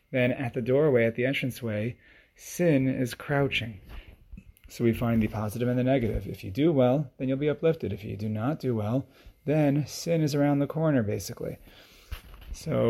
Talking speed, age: 185 wpm, 30-49